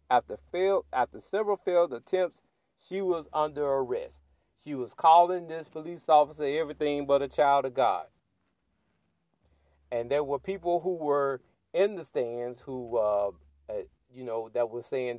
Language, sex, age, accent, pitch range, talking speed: English, male, 40-59, American, 115-185 Hz, 150 wpm